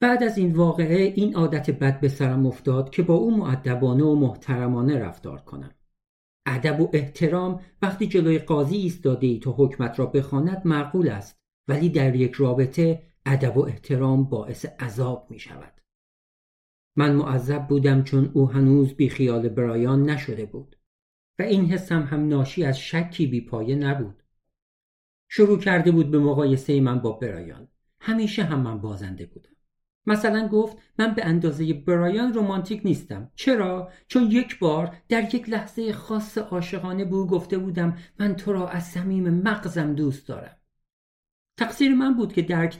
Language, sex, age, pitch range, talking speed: Persian, male, 50-69, 135-185 Hz, 155 wpm